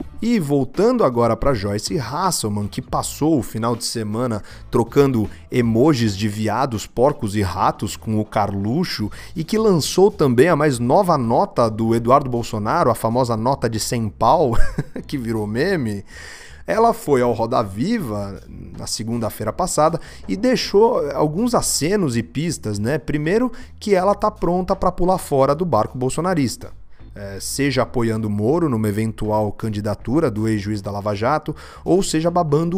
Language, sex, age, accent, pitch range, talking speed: Portuguese, male, 30-49, Brazilian, 110-165 Hz, 150 wpm